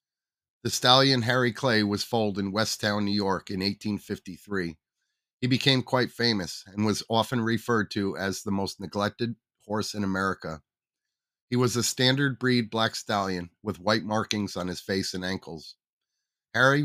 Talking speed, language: 155 wpm, English